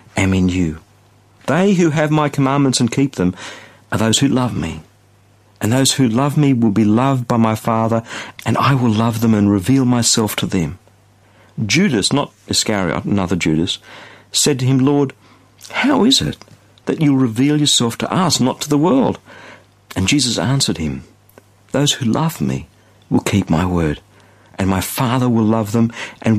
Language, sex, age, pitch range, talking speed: English, male, 60-79, 100-130 Hz, 175 wpm